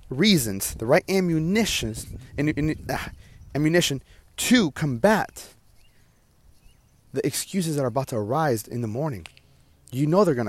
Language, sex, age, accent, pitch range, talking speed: English, male, 30-49, American, 100-125 Hz, 120 wpm